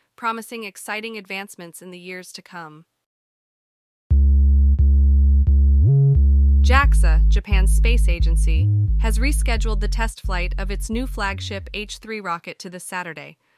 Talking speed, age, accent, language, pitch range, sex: 115 wpm, 20-39, American, English, 170-215 Hz, female